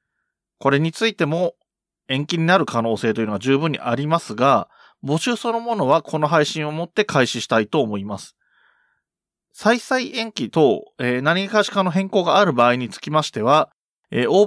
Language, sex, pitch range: Japanese, male, 120-185 Hz